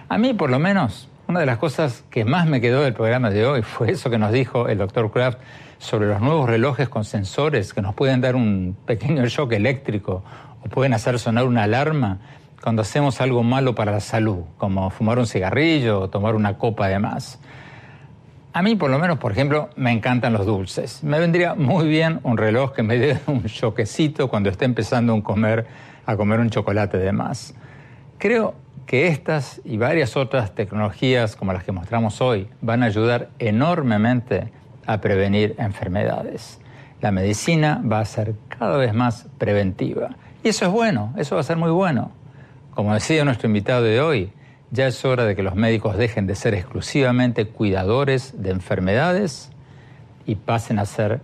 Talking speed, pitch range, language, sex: 185 wpm, 110-140 Hz, Spanish, male